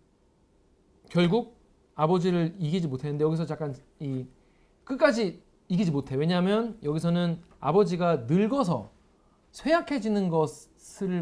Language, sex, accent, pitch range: Korean, male, native, 145-210 Hz